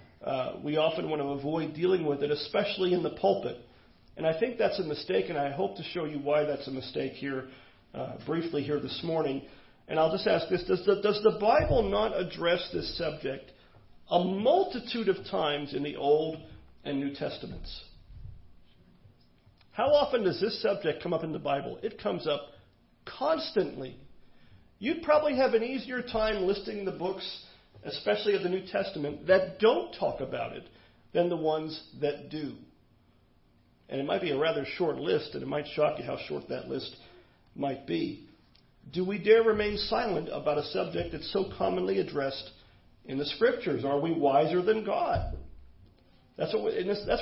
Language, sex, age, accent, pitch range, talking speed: English, male, 40-59, American, 140-205 Hz, 175 wpm